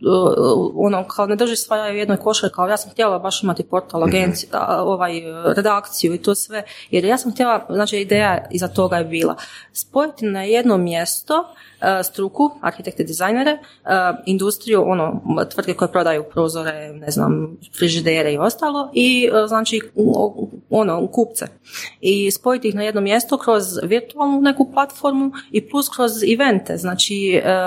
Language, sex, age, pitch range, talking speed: Croatian, female, 30-49, 180-215 Hz, 145 wpm